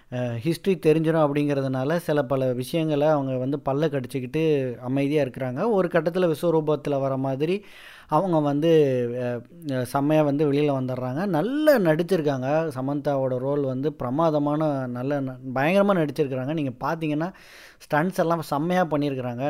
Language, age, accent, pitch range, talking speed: Tamil, 20-39, native, 130-170 Hz, 115 wpm